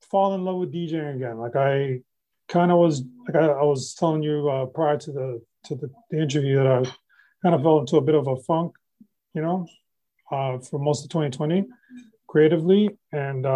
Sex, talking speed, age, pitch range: male, 195 wpm, 30-49, 145-185 Hz